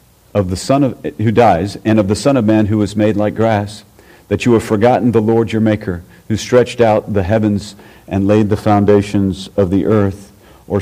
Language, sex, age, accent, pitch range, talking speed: English, male, 50-69, American, 100-115 Hz, 210 wpm